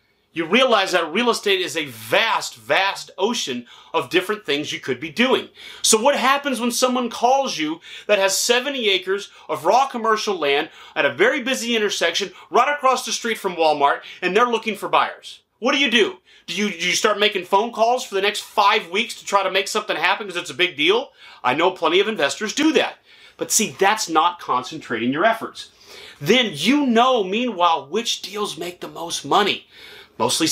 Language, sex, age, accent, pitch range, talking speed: English, male, 30-49, American, 160-235 Hz, 195 wpm